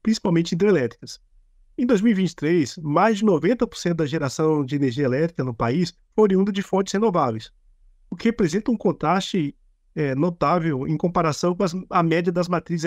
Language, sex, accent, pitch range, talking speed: Portuguese, male, Brazilian, 155-195 Hz, 150 wpm